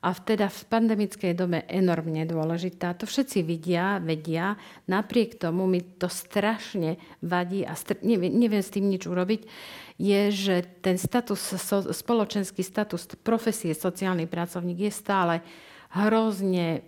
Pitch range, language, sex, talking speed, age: 175-210 Hz, Slovak, female, 140 wpm, 50-69